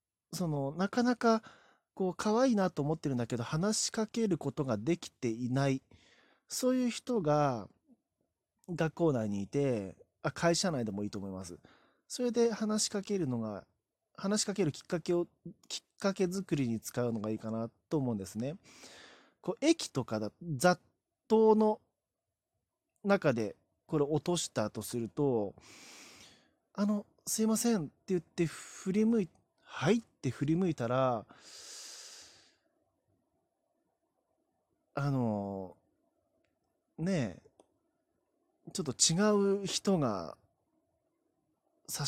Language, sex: Japanese, male